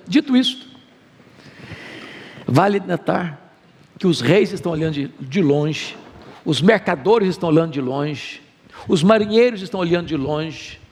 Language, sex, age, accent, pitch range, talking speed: Portuguese, male, 60-79, Brazilian, 155-230 Hz, 130 wpm